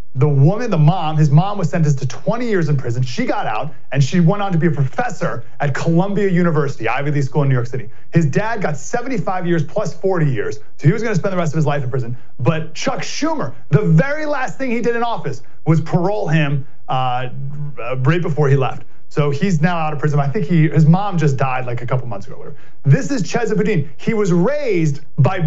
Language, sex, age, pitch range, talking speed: English, male, 30-49, 145-200 Hz, 235 wpm